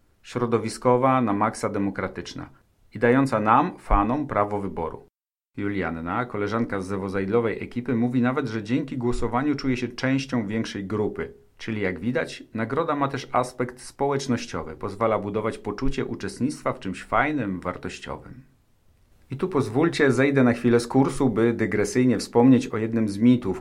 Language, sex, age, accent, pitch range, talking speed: Polish, male, 40-59, native, 100-125 Hz, 140 wpm